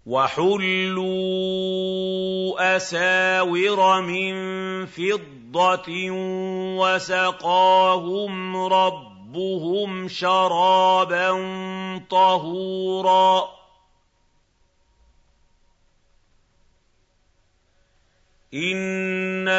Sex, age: male, 50-69